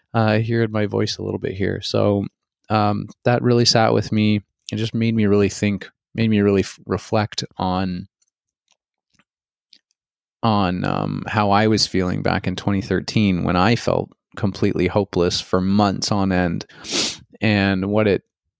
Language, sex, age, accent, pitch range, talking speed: English, male, 30-49, American, 95-110 Hz, 155 wpm